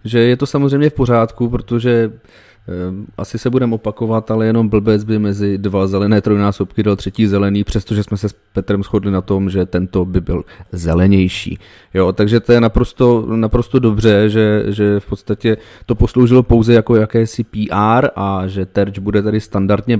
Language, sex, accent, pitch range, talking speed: Czech, male, native, 105-125 Hz, 170 wpm